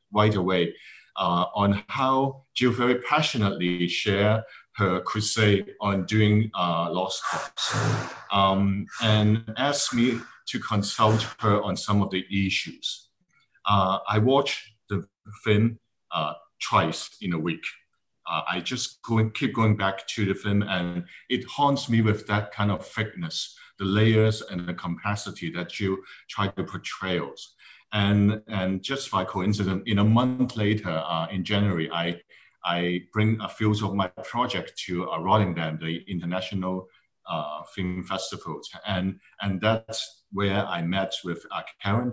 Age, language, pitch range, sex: 50-69, English, 95-110 Hz, male